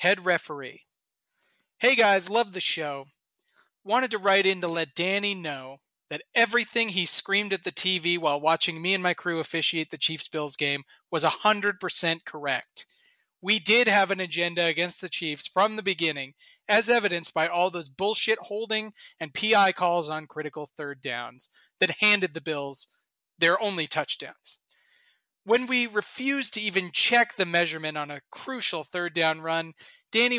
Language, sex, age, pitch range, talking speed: English, male, 30-49, 160-215 Hz, 160 wpm